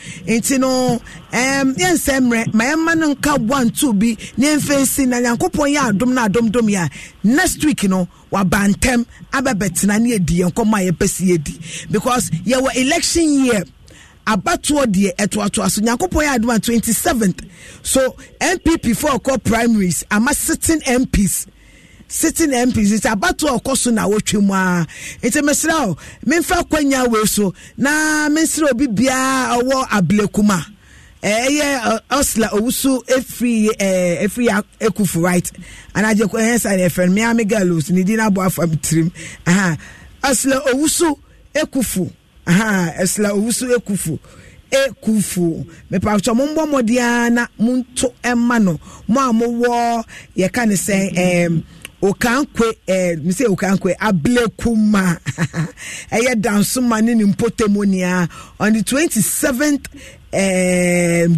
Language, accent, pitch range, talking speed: English, Nigerian, 190-260 Hz, 135 wpm